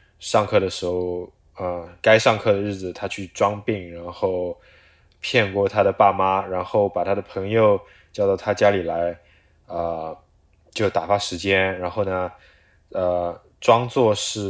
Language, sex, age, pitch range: Chinese, male, 20-39, 85-100 Hz